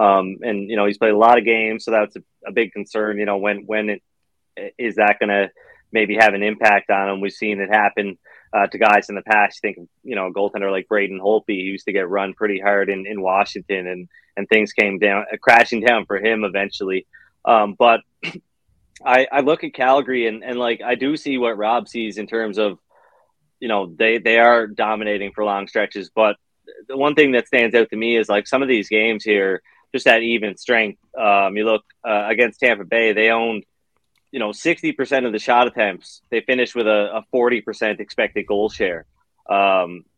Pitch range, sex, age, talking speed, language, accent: 100-120 Hz, male, 20-39, 215 wpm, English, American